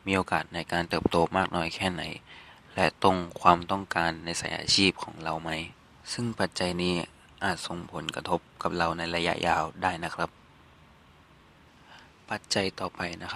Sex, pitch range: male, 85-95 Hz